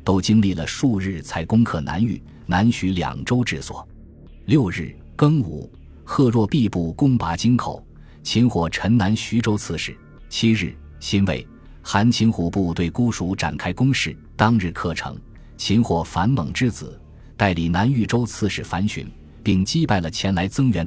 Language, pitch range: Chinese, 85-115 Hz